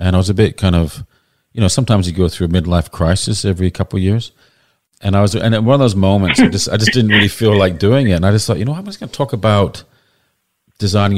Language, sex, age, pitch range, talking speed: English, male, 40-59, 85-100 Hz, 280 wpm